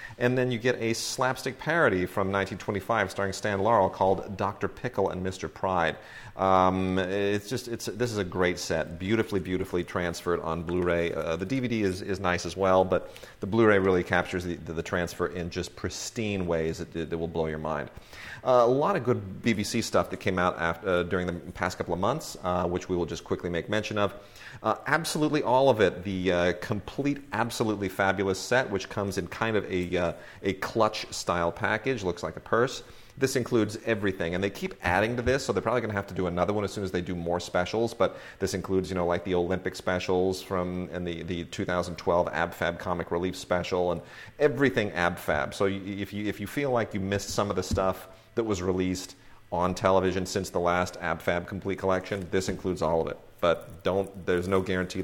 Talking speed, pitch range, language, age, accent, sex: 210 wpm, 90-105 Hz, English, 40-59, American, male